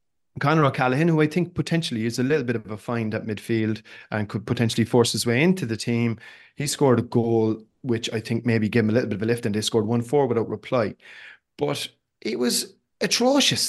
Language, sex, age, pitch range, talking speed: English, male, 30-49, 115-155 Hz, 220 wpm